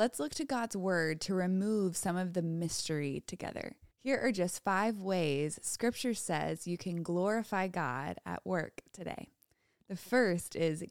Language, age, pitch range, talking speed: English, 20-39, 170-220 Hz, 160 wpm